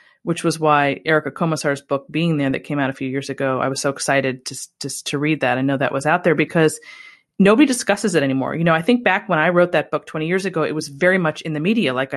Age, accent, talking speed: 30-49, American, 275 wpm